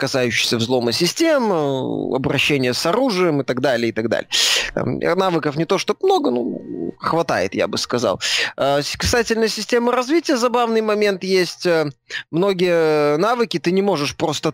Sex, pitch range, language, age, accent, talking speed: male, 135-185 Hz, Russian, 20-39, native, 150 wpm